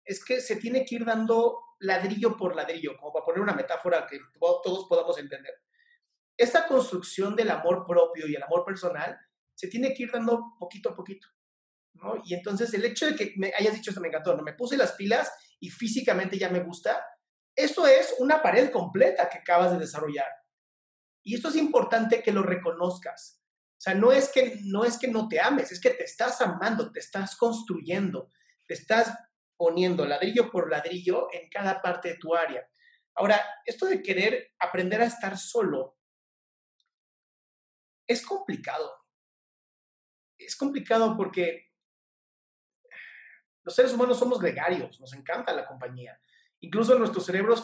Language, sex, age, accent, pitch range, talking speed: Spanish, male, 40-59, Mexican, 185-265 Hz, 165 wpm